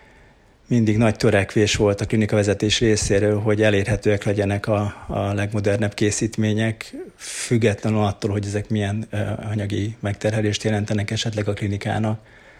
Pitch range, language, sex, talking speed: 100-110 Hz, Hungarian, male, 120 wpm